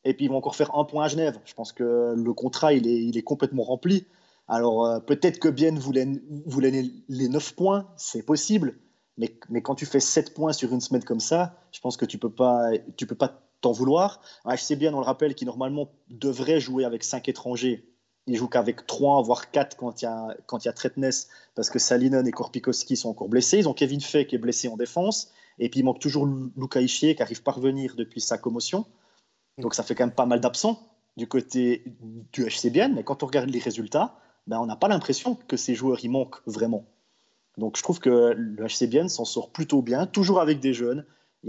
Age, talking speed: 30-49, 230 wpm